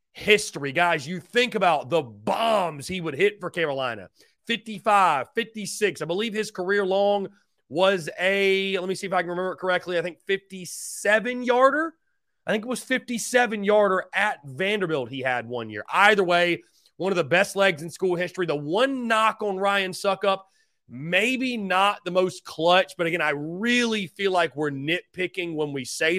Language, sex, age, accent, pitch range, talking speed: English, male, 30-49, American, 150-200 Hz, 180 wpm